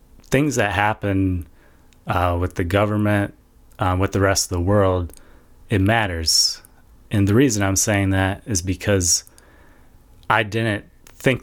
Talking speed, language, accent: 140 wpm, English, American